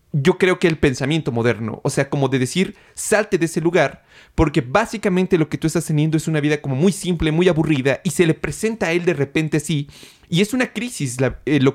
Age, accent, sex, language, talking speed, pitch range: 30-49, Mexican, male, Spanish, 230 wpm, 145-195 Hz